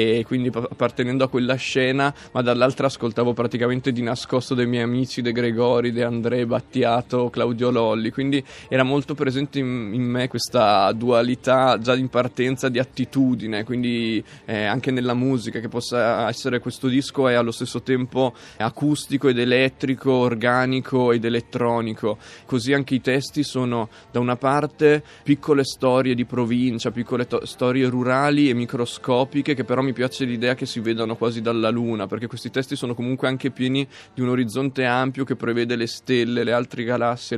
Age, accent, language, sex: 20-39, native, Italian, male